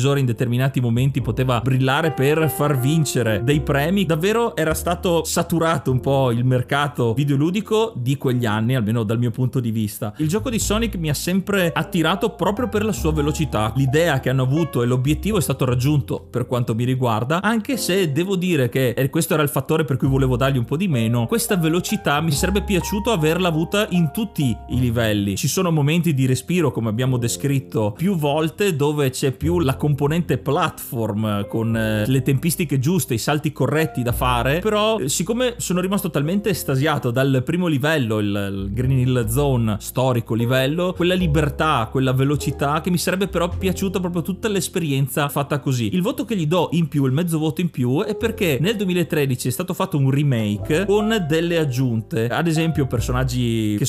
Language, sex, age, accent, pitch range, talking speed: Italian, male, 30-49, native, 130-170 Hz, 185 wpm